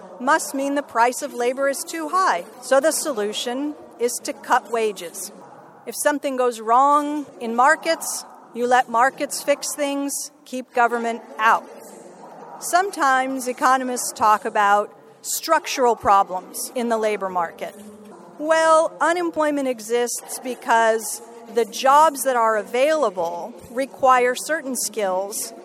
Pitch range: 220-285 Hz